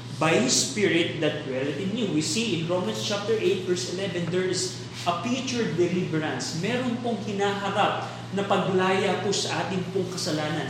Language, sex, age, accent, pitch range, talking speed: Filipino, male, 20-39, native, 160-205 Hz, 155 wpm